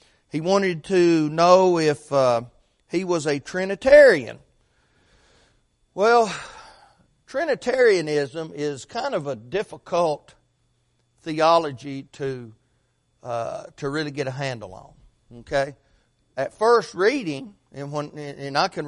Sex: male